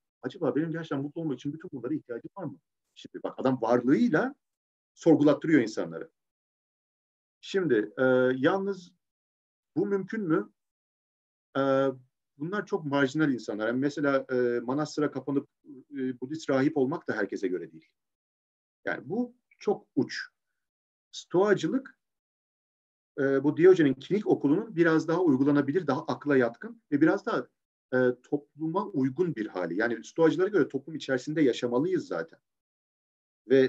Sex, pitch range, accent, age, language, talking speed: male, 130-185 Hz, native, 50-69, Turkish, 130 wpm